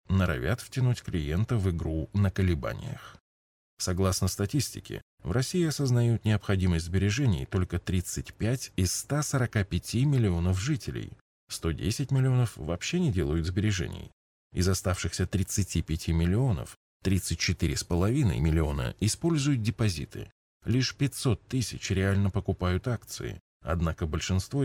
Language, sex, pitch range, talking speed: Russian, male, 90-120 Hz, 100 wpm